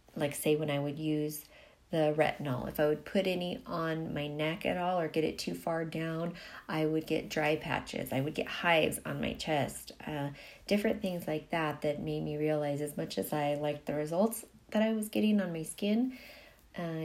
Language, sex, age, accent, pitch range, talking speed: English, female, 30-49, American, 150-180 Hz, 210 wpm